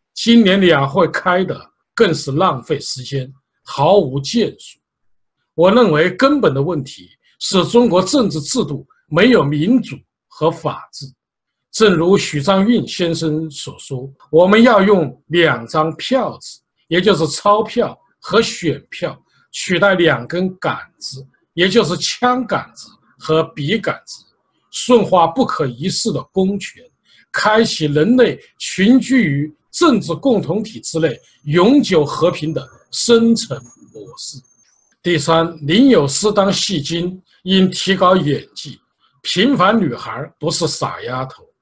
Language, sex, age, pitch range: Chinese, male, 50-69, 155-220 Hz